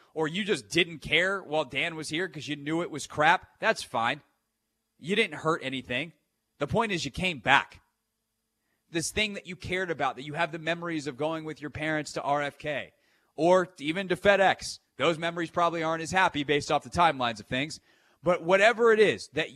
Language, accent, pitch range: English, American, 145-190 Hz